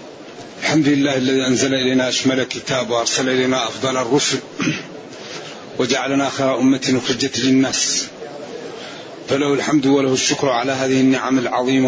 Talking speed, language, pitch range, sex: 120 wpm, Arabic, 130-150 Hz, male